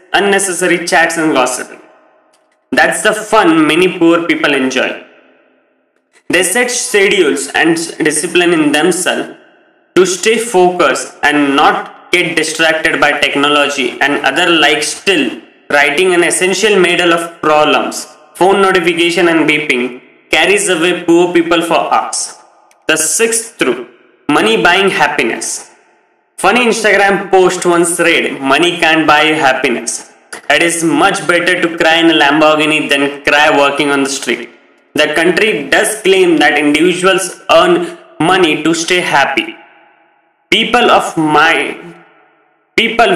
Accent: Indian